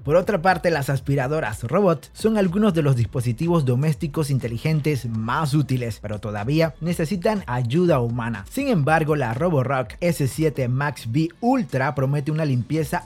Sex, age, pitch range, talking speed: male, 30-49, 130-170 Hz, 140 wpm